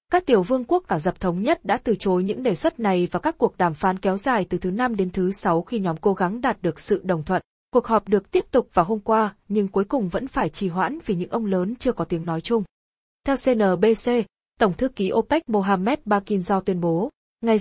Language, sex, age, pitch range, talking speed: Vietnamese, female, 20-39, 185-235 Hz, 245 wpm